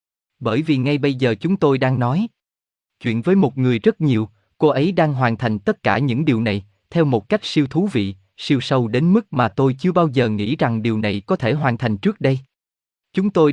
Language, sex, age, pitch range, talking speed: Vietnamese, male, 20-39, 115-160 Hz, 230 wpm